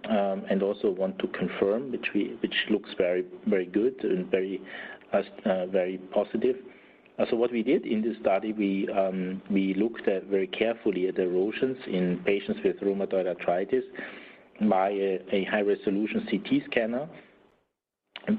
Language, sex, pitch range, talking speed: English, male, 95-115 Hz, 155 wpm